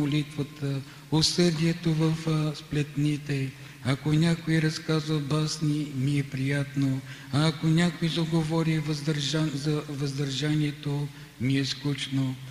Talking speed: 95 wpm